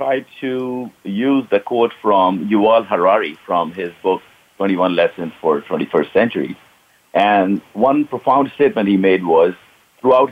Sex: male